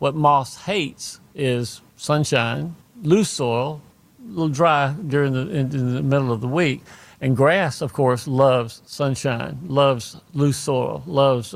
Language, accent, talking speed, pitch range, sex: English, American, 150 wpm, 125-150 Hz, male